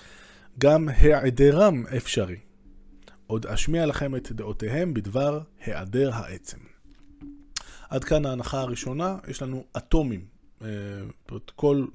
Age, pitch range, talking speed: 20-39, 110-155 Hz, 95 wpm